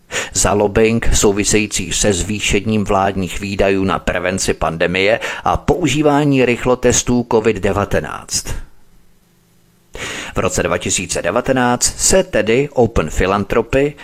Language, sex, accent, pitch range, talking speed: Czech, male, native, 95-125 Hz, 90 wpm